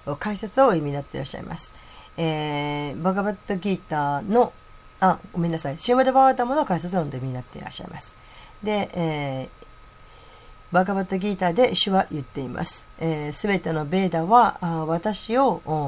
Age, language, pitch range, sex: 40-59, Japanese, 145-195 Hz, female